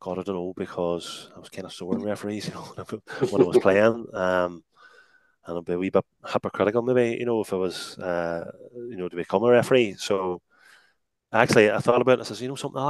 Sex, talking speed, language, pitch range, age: male, 235 wpm, English, 95-115 Hz, 20-39